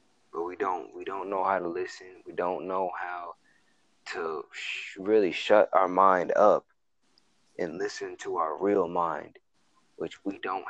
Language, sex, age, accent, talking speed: English, male, 20-39, American, 165 wpm